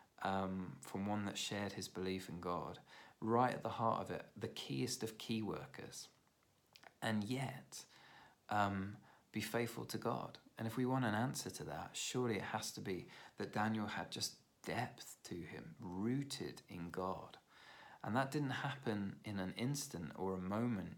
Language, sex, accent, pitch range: English, male, British, 95-110 Hz